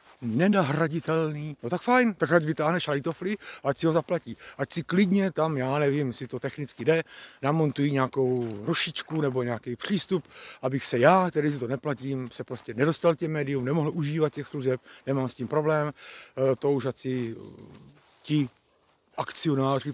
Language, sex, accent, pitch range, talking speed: Czech, male, native, 125-155 Hz, 155 wpm